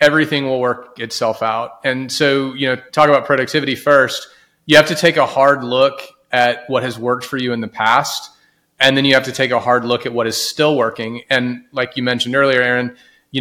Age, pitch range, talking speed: 30-49, 115-135 Hz, 225 wpm